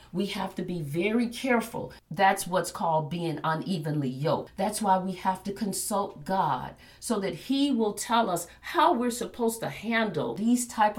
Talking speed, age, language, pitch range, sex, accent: 175 wpm, 50-69, English, 175-235 Hz, female, American